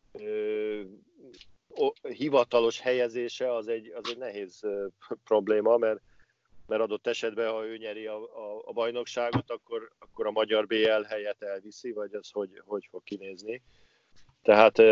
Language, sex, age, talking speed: Hungarian, male, 50-69, 125 wpm